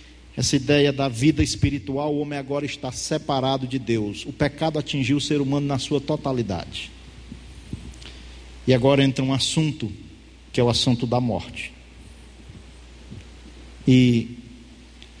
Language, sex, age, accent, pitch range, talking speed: Portuguese, male, 50-69, Brazilian, 115-175 Hz, 130 wpm